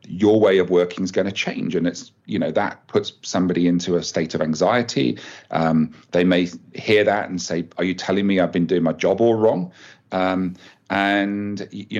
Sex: male